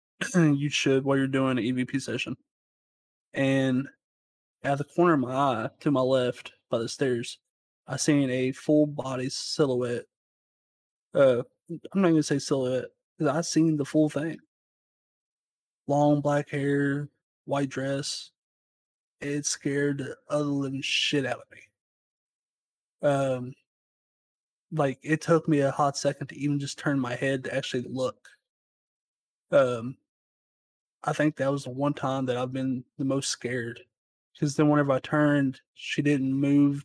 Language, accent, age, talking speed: English, American, 20-39, 150 wpm